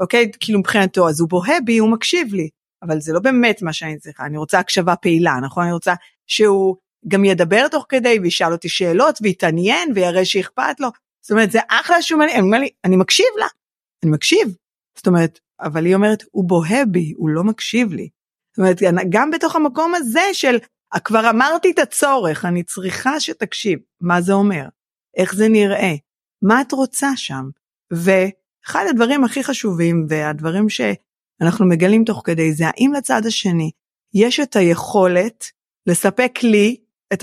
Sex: female